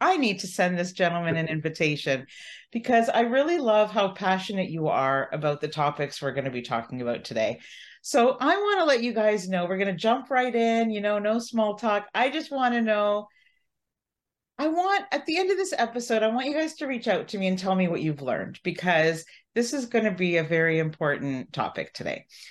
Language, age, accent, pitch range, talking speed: English, 40-59, American, 170-265 Hz, 225 wpm